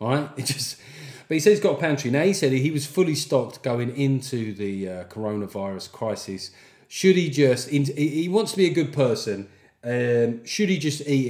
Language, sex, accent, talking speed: English, male, British, 200 wpm